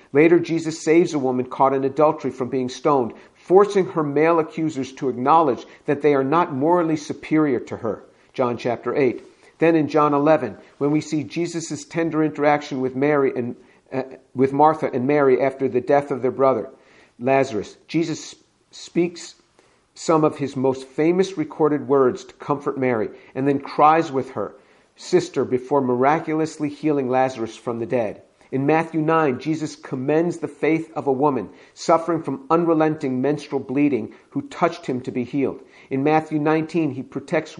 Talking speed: 165 wpm